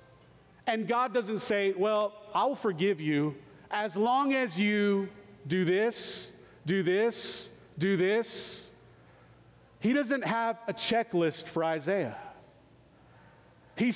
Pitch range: 170-235 Hz